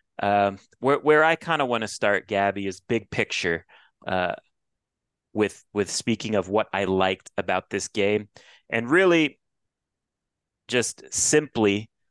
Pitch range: 100-120 Hz